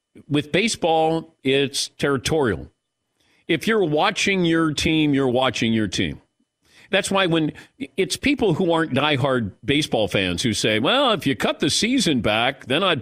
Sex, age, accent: male, 50-69, American